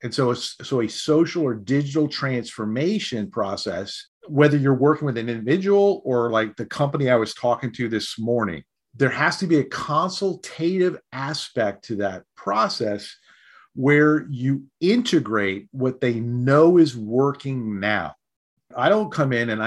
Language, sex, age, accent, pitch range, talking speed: English, male, 40-59, American, 115-155 Hz, 150 wpm